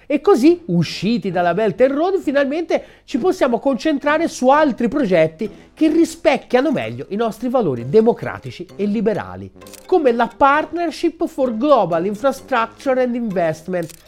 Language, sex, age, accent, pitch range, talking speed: Italian, male, 30-49, native, 175-275 Hz, 130 wpm